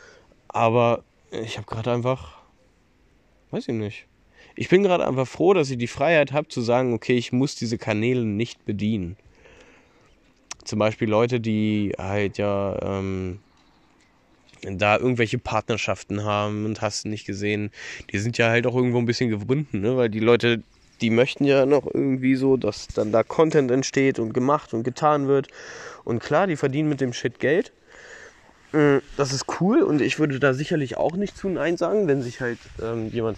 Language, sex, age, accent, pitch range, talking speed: German, male, 20-39, German, 110-140 Hz, 175 wpm